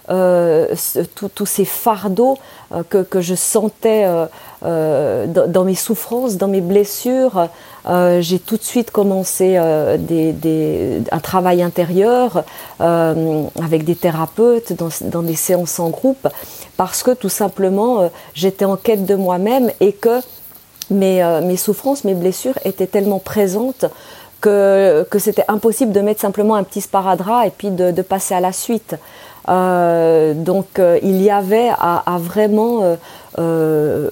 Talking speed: 155 wpm